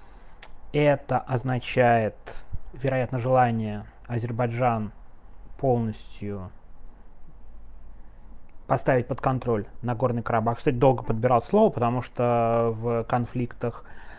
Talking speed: 85 wpm